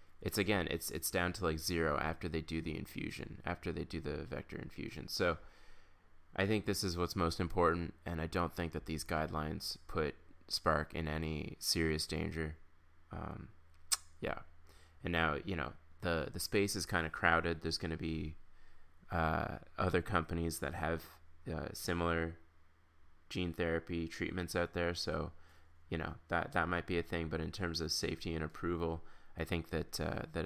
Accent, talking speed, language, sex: American, 175 wpm, English, male